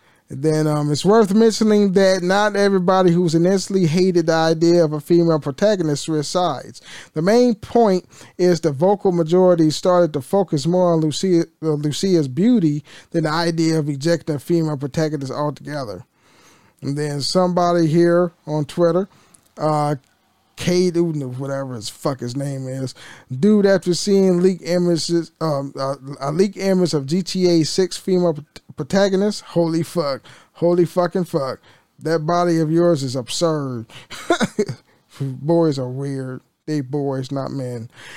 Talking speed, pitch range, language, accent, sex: 145 wpm, 150-185 Hz, English, American, male